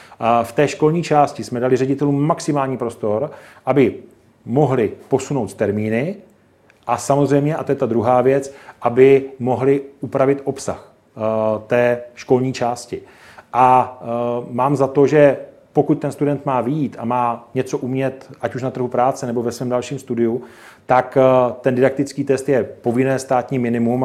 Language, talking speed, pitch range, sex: Czech, 150 wpm, 120-140 Hz, male